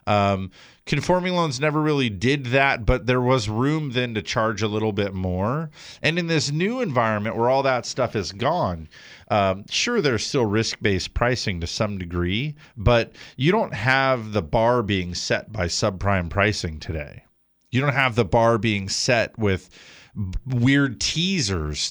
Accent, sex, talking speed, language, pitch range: American, male, 165 wpm, English, 95-125 Hz